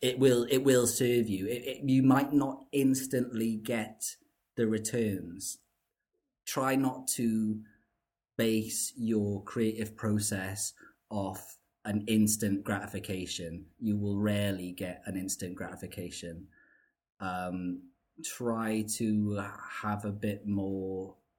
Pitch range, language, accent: 100-115 Hz, English, British